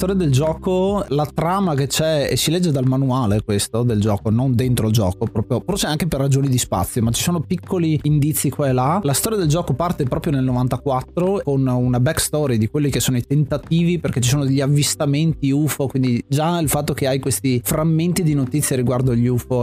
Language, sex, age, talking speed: Italian, male, 30-49, 215 wpm